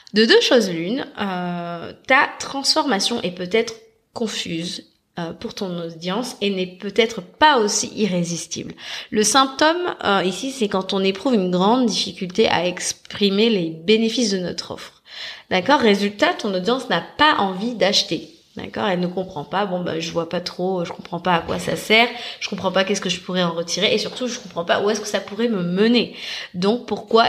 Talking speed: 190 wpm